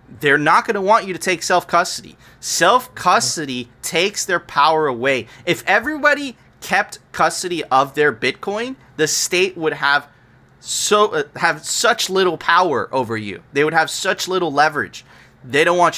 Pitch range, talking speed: 130-175 Hz, 165 wpm